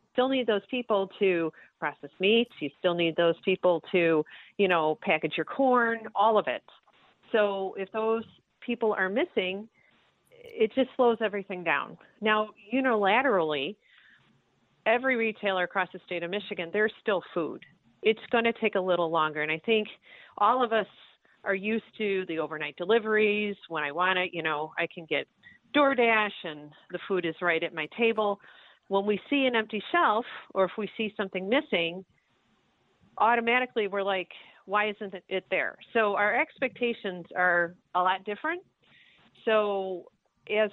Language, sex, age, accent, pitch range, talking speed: English, female, 40-59, American, 185-230 Hz, 160 wpm